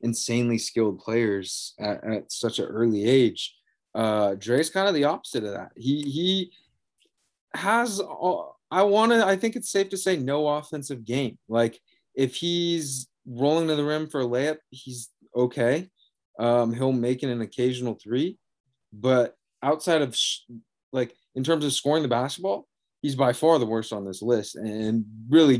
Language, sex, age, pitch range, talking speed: English, male, 20-39, 110-145 Hz, 170 wpm